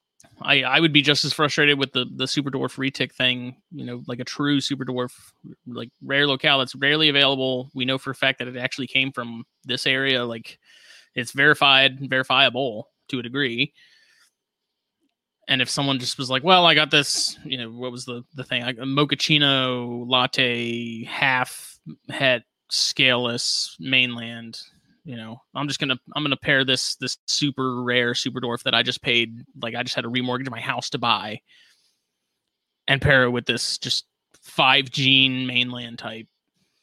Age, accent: 20-39, American